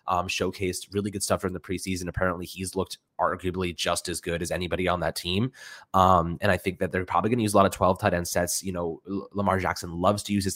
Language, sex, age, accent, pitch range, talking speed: English, male, 20-39, American, 90-100 Hz, 260 wpm